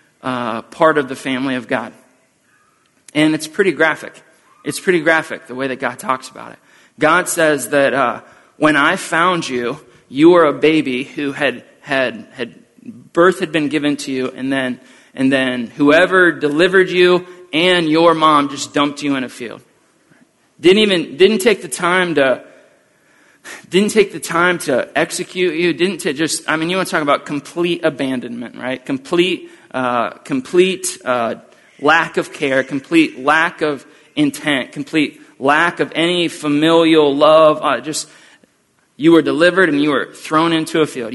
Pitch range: 140-180 Hz